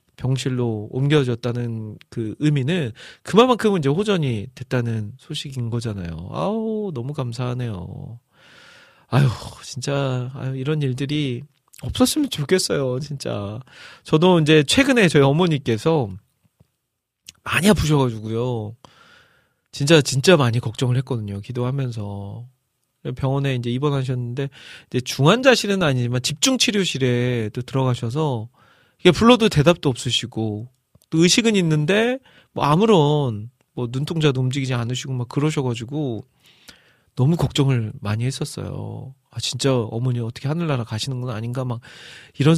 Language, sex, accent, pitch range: Korean, male, native, 120-150 Hz